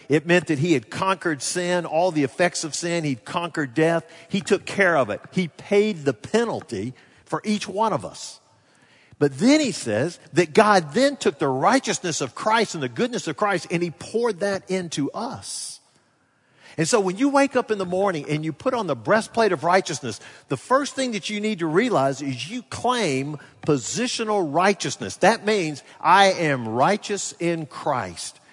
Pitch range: 140-200 Hz